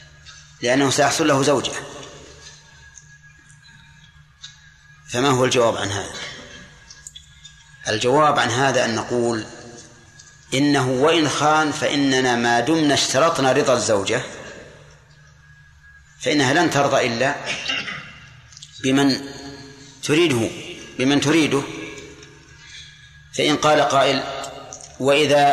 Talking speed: 80 wpm